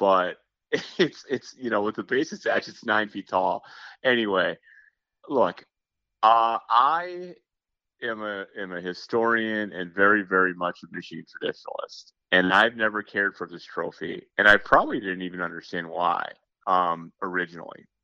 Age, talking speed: 30-49, 150 wpm